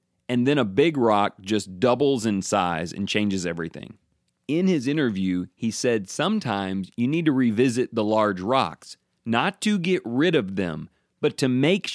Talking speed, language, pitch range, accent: 170 wpm, English, 105-140 Hz, American